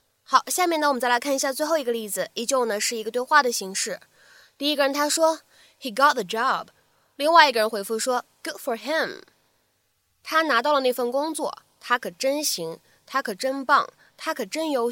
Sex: female